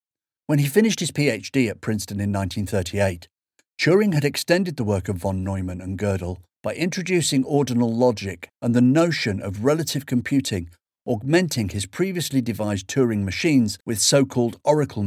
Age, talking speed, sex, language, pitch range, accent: 50-69, 150 wpm, male, English, 100-140 Hz, British